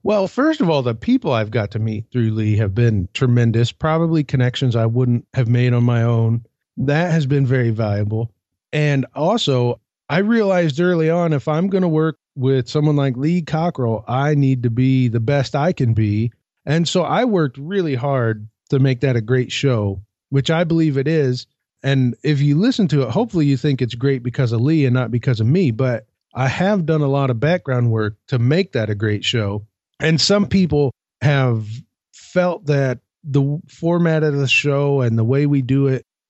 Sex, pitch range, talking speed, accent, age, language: male, 120-160 Hz, 200 wpm, American, 30-49, English